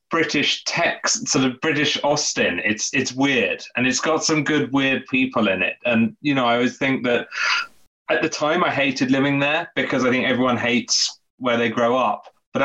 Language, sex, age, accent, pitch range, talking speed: English, male, 30-49, British, 125-180 Hz, 200 wpm